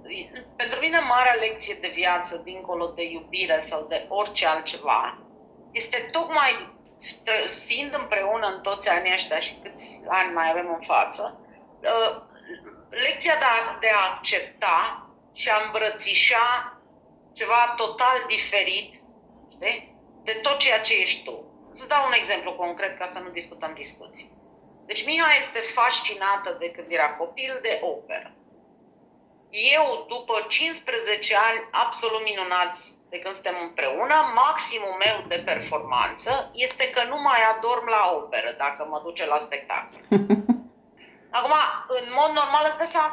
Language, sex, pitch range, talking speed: Romanian, female, 190-290 Hz, 135 wpm